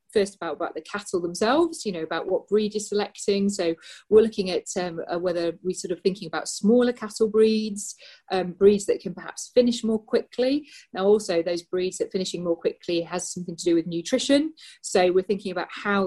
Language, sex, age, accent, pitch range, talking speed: English, female, 40-59, British, 180-210 Hz, 200 wpm